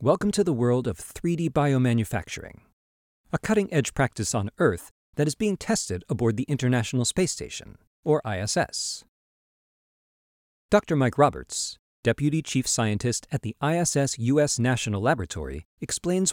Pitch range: 110-155 Hz